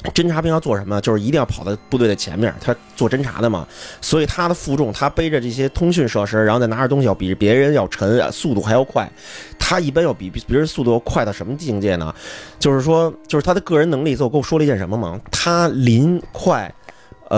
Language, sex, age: Chinese, male, 30-49